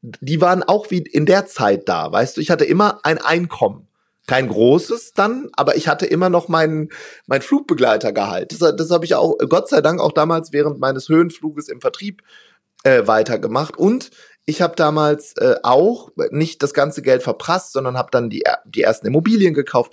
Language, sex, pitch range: German, male, 135-185 Hz